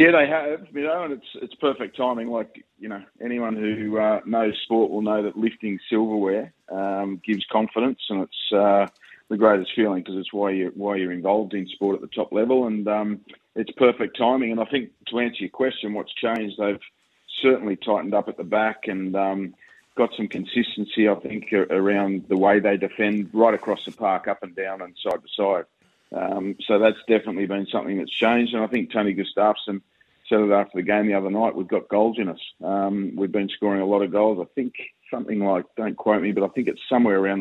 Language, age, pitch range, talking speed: English, 30-49, 95-110 Hz, 215 wpm